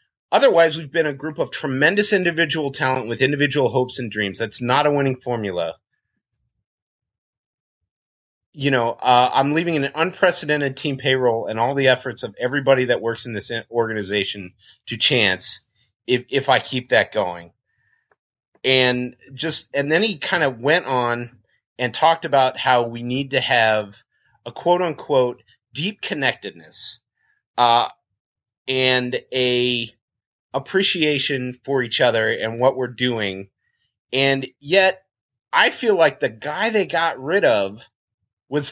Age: 30-49